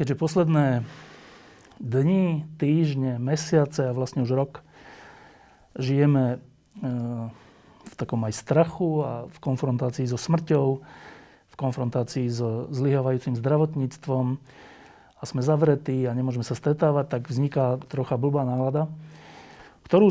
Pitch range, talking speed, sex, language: 130-155 Hz, 110 wpm, male, Slovak